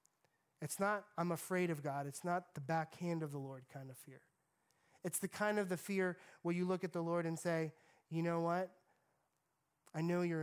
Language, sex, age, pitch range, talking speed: English, male, 30-49, 155-180 Hz, 205 wpm